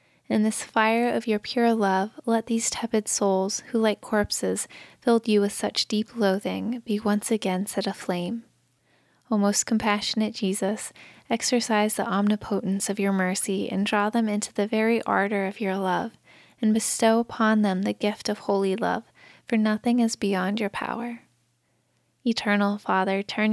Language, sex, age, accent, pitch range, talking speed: English, female, 10-29, American, 195-225 Hz, 160 wpm